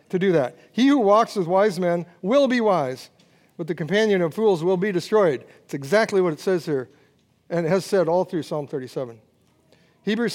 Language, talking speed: English, 205 wpm